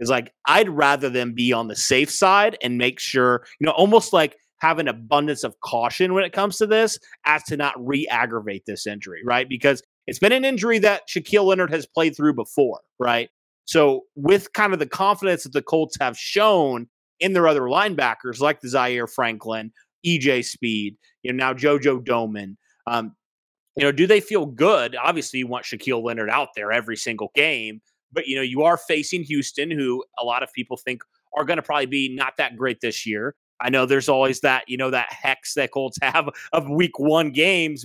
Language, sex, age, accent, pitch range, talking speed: English, male, 30-49, American, 120-155 Hz, 205 wpm